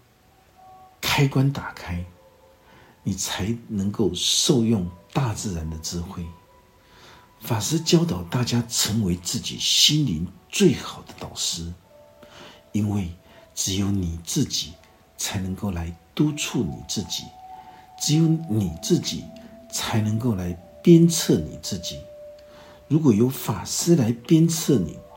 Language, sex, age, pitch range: Chinese, male, 60-79, 95-155 Hz